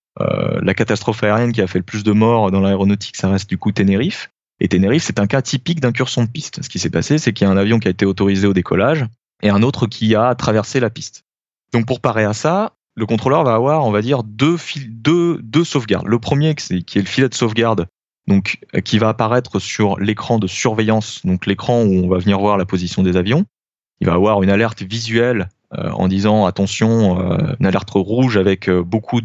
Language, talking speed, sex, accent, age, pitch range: French, 230 wpm, male, French, 20-39, 100-120 Hz